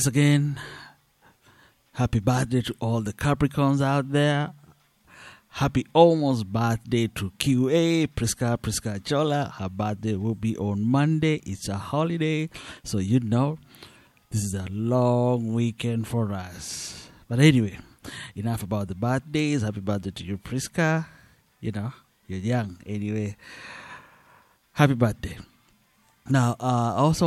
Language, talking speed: English, 130 wpm